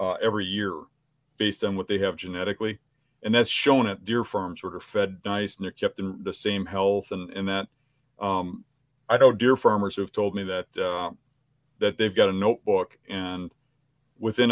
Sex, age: male, 40-59